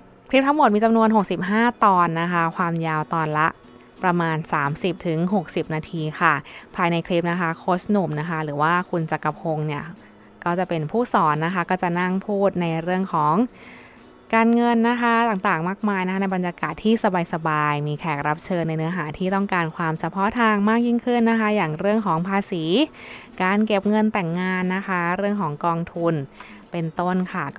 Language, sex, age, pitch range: Thai, female, 20-39, 160-210 Hz